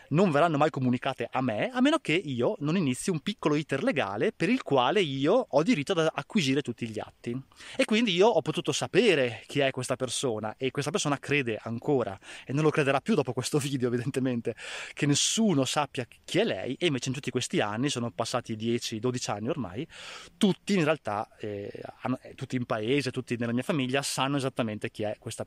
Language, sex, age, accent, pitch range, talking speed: Italian, male, 20-39, native, 120-150 Hz, 200 wpm